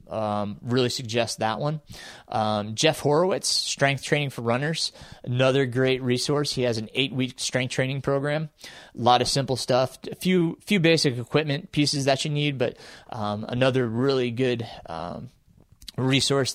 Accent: American